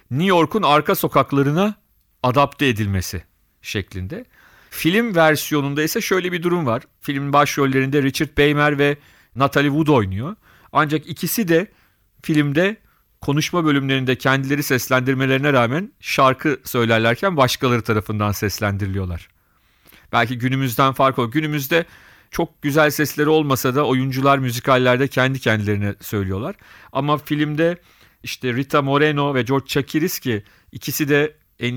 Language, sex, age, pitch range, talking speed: Turkish, male, 40-59, 120-150 Hz, 120 wpm